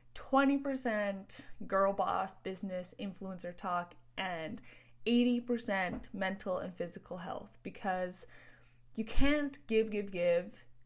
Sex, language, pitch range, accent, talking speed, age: female, English, 180-230 Hz, American, 95 wpm, 20-39